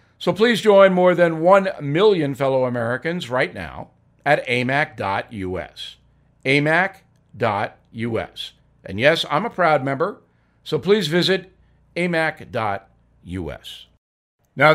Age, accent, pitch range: 50-69, American, 130-190 Hz